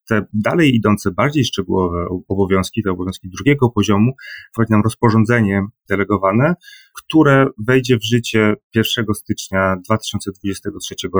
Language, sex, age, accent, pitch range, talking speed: Polish, male, 30-49, native, 100-120 Hz, 115 wpm